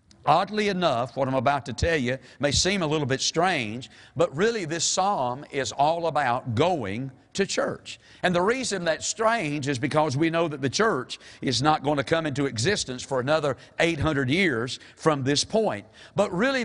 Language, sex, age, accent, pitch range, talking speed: English, male, 50-69, American, 145-195 Hz, 185 wpm